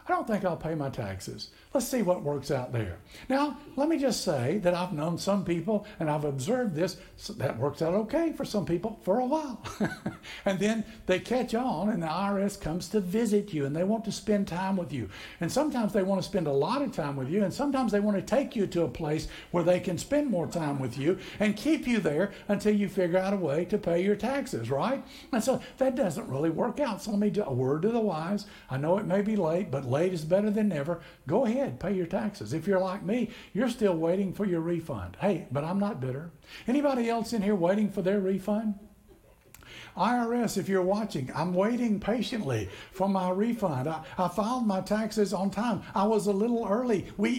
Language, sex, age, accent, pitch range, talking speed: English, male, 60-79, American, 170-225 Hz, 230 wpm